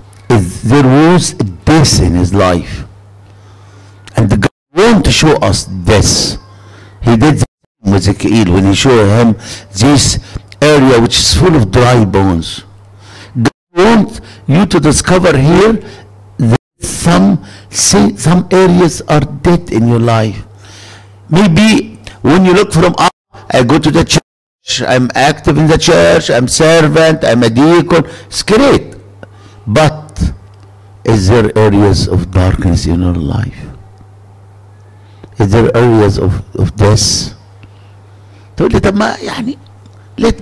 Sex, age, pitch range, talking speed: male, 60-79, 100-135 Hz, 130 wpm